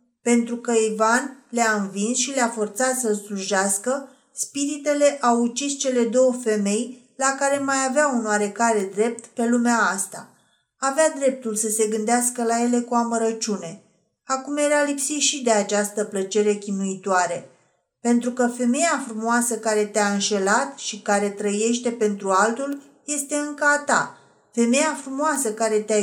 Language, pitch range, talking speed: Romanian, 210-275 Hz, 145 wpm